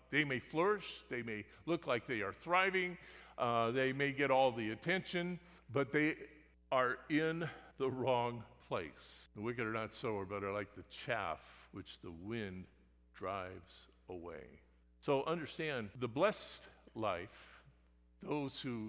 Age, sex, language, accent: 50-69, male, English, American